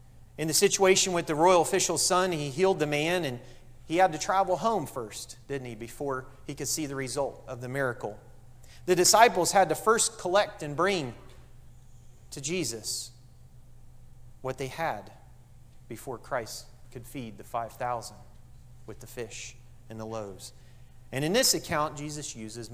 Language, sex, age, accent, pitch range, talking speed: English, male, 30-49, American, 120-155 Hz, 160 wpm